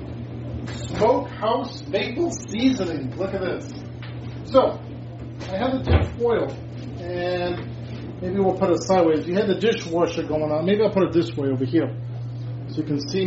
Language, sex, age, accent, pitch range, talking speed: English, male, 40-59, American, 125-185 Hz, 165 wpm